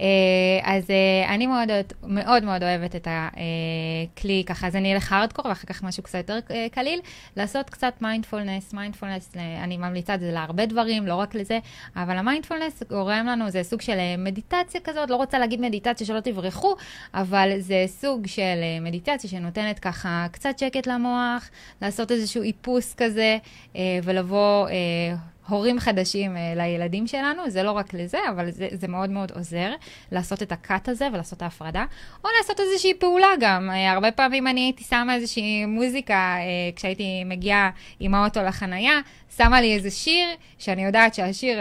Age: 20-39